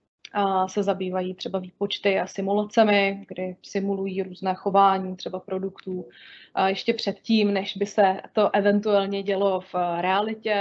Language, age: Czech, 20-39